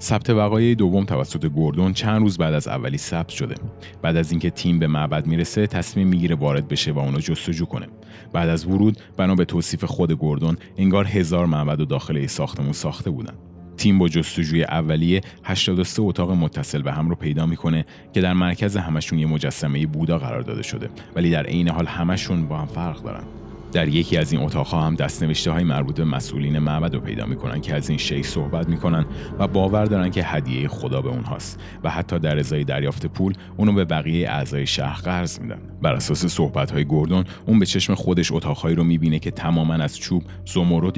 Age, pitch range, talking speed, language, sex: 30-49, 75-95 Hz, 190 wpm, Persian, male